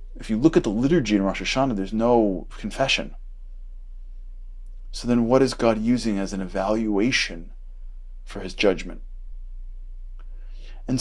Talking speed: 135 wpm